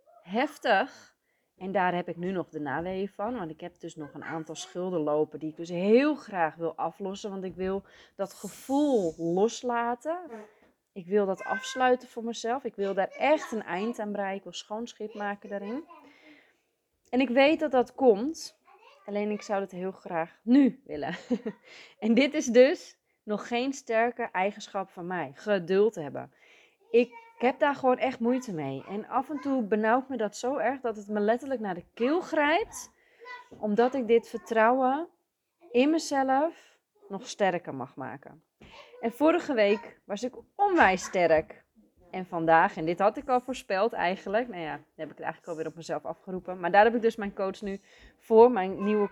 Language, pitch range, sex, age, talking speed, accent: Dutch, 180-255 Hz, female, 20-39, 185 wpm, Dutch